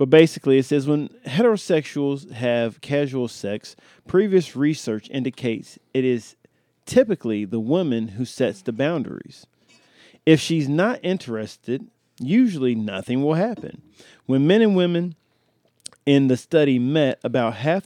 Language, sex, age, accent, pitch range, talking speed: English, male, 40-59, American, 115-155 Hz, 130 wpm